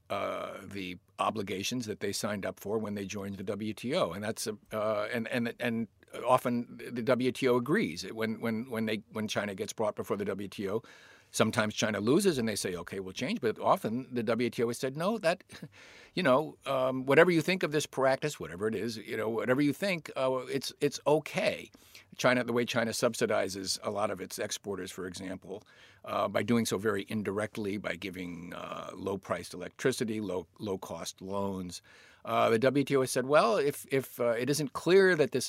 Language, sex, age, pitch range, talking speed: English, male, 50-69, 105-130 Hz, 190 wpm